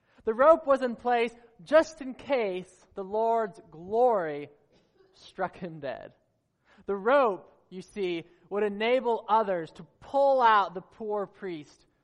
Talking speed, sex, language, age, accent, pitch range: 135 wpm, male, English, 20-39, American, 175-235 Hz